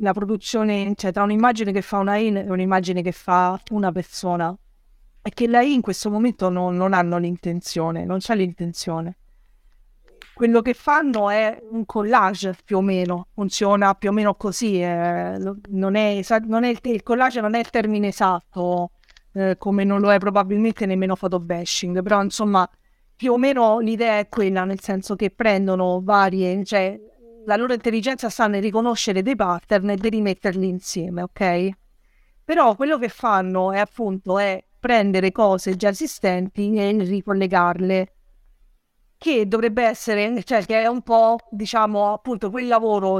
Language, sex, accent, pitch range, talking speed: Italian, female, native, 190-225 Hz, 160 wpm